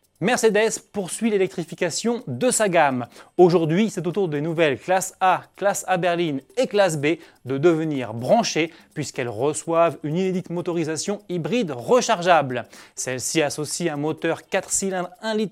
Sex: male